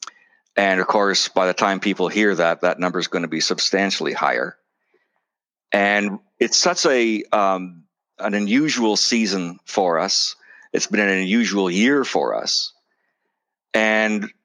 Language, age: English, 50-69